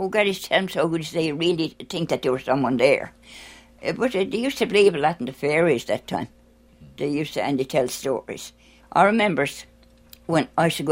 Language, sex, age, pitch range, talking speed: English, female, 60-79, 135-185 Hz, 235 wpm